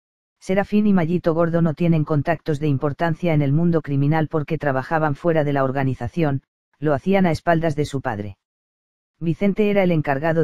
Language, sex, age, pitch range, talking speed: Spanish, female, 40-59, 145-170 Hz, 170 wpm